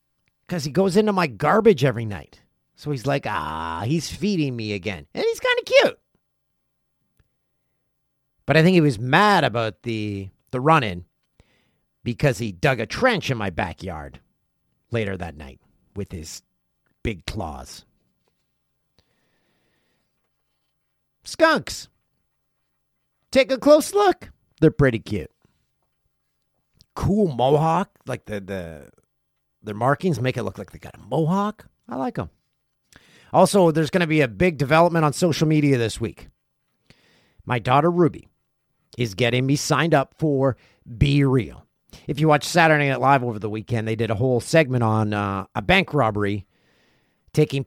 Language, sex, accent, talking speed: English, male, American, 145 wpm